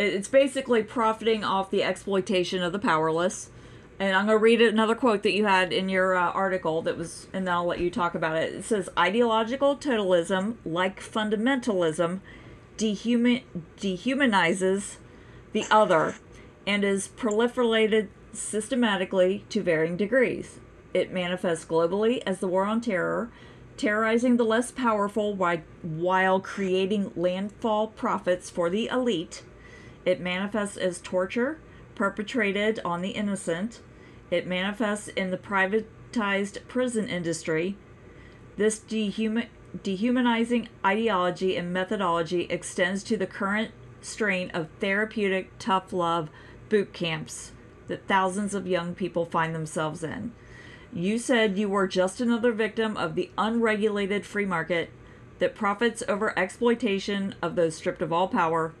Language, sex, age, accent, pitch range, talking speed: English, female, 40-59, American, 175-220 Hz, 130 wpm